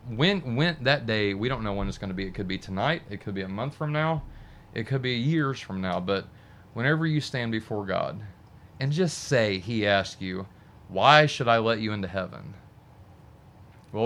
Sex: male